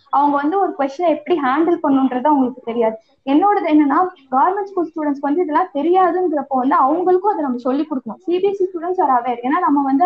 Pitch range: 270-350 Hz